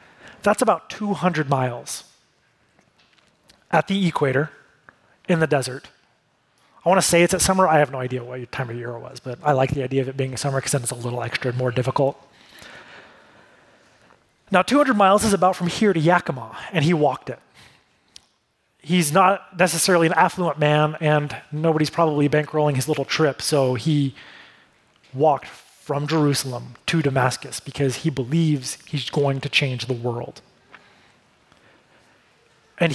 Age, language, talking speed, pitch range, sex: 30-49, English, 160 wpm, 130-170 Hz, male